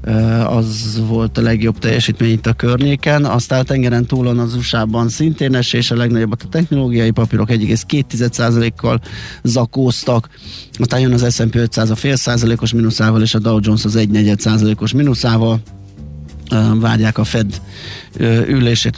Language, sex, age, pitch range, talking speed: Hungarian, male, 20-39, 110-125 Hz, 145 wpm